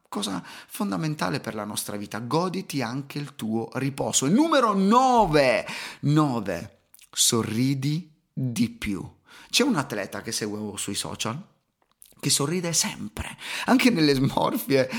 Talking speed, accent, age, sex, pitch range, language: 120 wpm, native, 30-49, male, 125-200 Hz, Italian